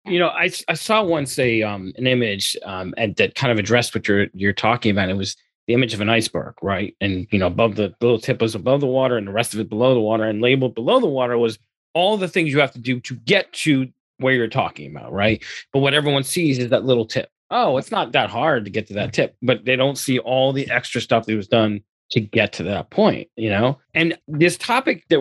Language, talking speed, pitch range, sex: English, 260 wpm, 110-135 Hz, male